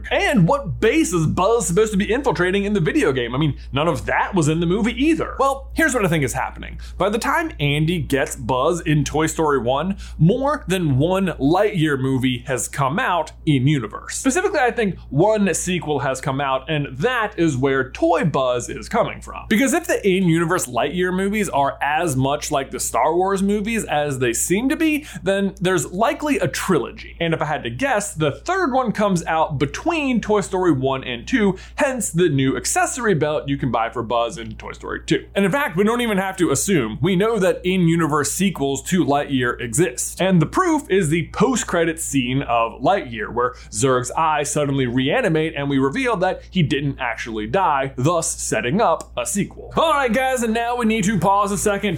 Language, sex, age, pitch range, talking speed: English, male, 20-39, 145-210 Hz, 200 wpm